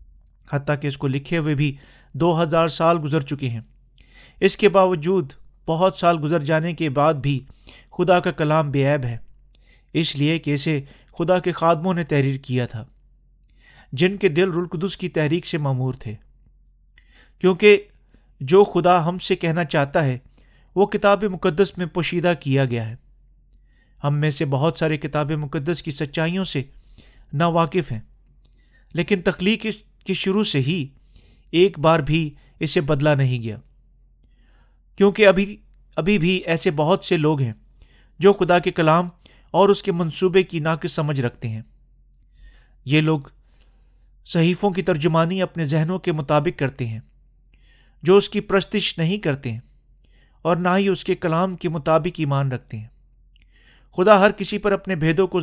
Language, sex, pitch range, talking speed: Urdu, male, 145-185 Hz, 160 wpm